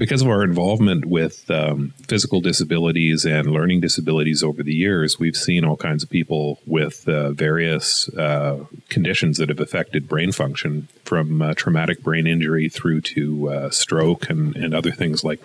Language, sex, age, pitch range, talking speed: English, male, 40-59, 75-95 Hz, 170 wpm